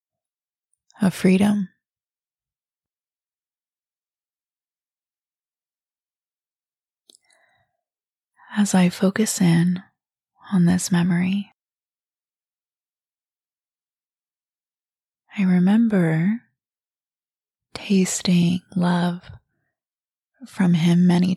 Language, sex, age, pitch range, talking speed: English, female, 20-39, 170-195 Hz, 45 wpm